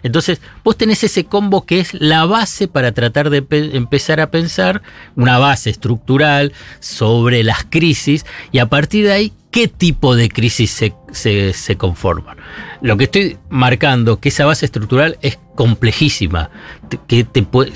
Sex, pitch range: male, 110-150 Hz